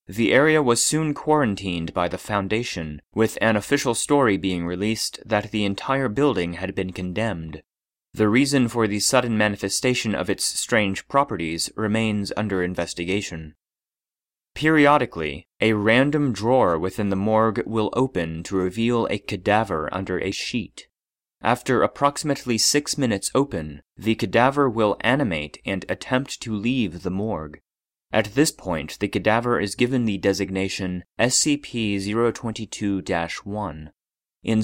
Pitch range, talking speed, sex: 95-125 Hz, 130 wpm, male